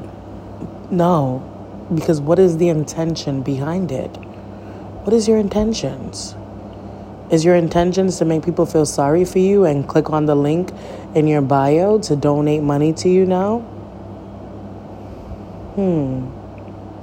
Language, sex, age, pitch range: English, female, 20-39, 105-165 Hz